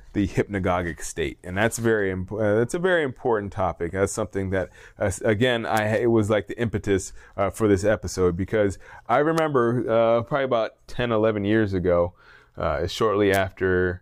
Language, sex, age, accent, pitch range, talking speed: English, male, 20-39, American, 90-110 Hz, 175 wpm